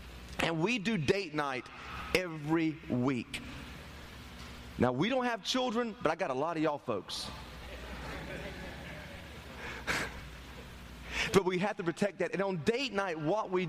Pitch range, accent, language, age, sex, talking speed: 115-185 Hz, American, English, 30-49, male, 140 wpm